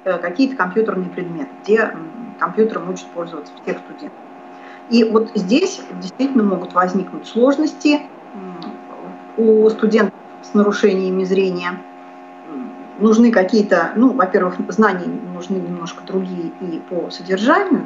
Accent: native